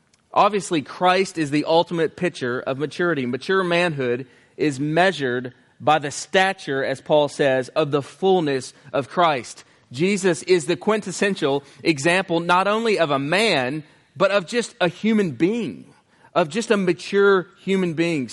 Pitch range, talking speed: 150-195 Hz, 145 wpm